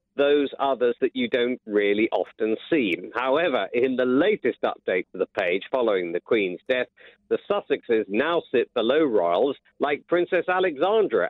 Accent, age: British, 50-69